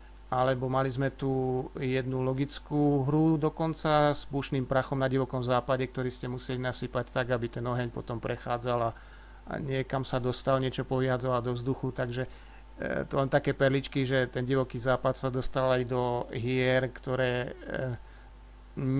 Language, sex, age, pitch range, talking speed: Slovak, male, 40-59, 125-140 Hz, 155 wpm